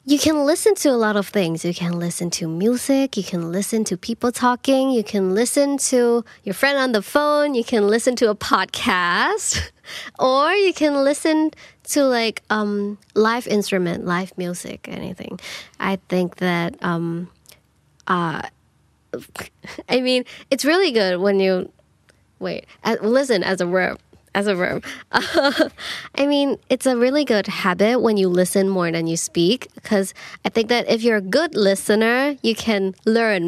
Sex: female